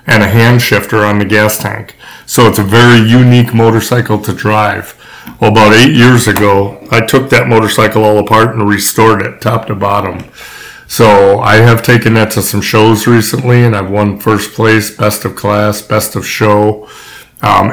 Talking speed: 180 wpm